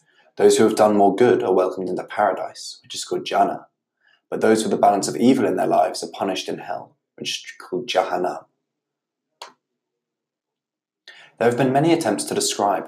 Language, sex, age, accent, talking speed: English, male, 20-39, British, 180 wpm